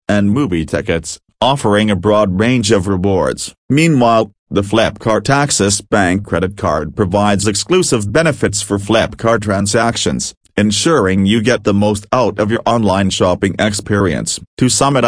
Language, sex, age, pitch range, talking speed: English, male, 40-59, 100-115 Hz, 145 wpm